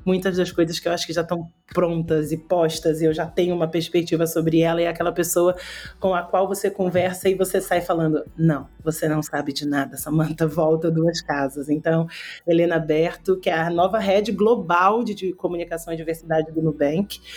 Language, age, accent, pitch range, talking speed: Portuguese, 30-49, Brazilian, 160-190 Hz, 205 wpm